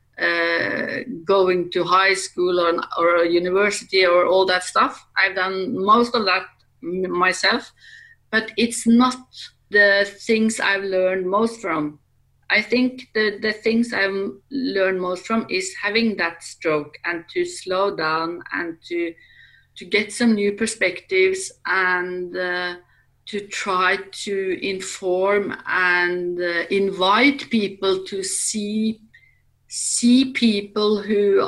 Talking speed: 130 wpm